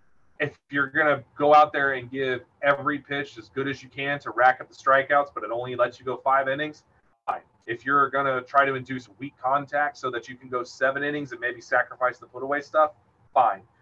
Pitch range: 120-145 Hz